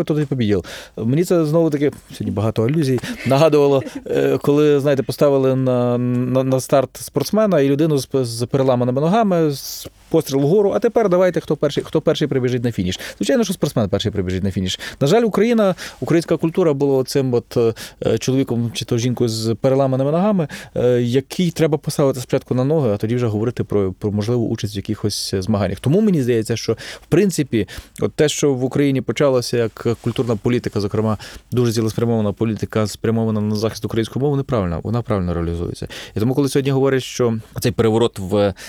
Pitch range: 110-140 Hz